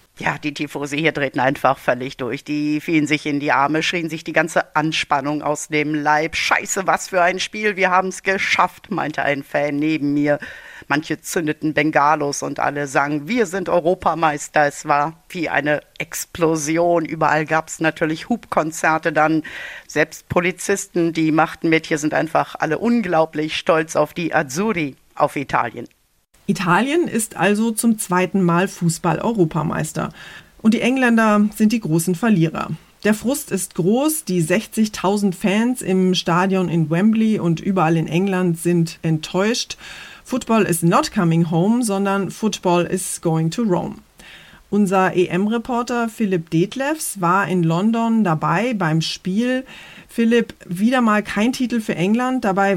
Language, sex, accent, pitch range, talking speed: German, female, German, 160-210 Hz, 150 wpm